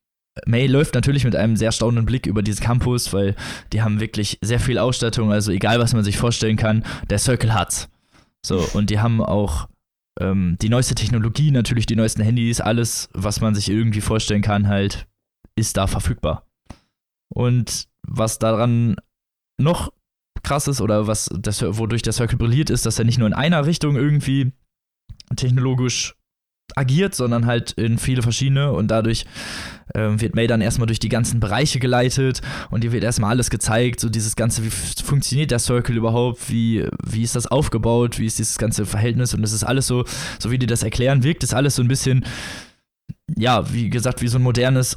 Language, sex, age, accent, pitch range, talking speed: German, male, 20-39, German, 110-125 Hz, 190 wpm